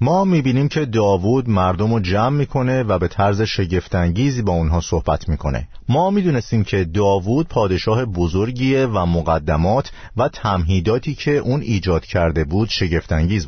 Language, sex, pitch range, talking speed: Persian, male, 85-120 Hz, 145 wpm